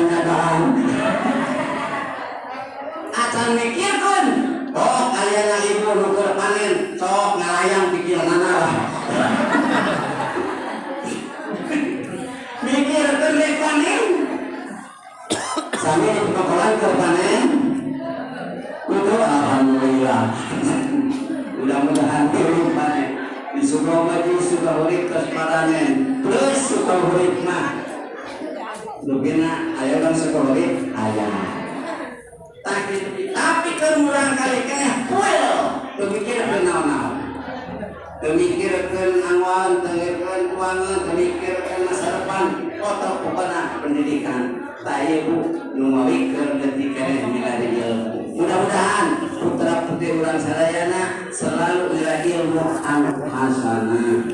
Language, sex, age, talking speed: Indonesian, male, 50-69, 75 wpm